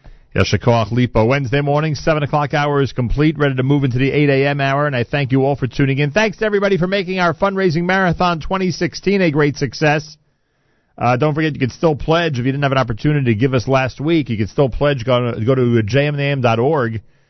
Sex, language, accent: male, English, American